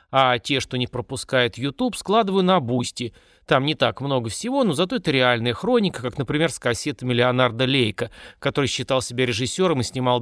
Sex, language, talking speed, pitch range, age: male, Russian, 180 wpm, 125-200 Hz, 30-49